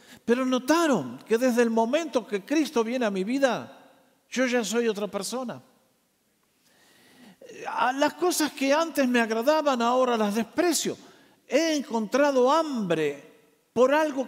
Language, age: Spanish, 50-69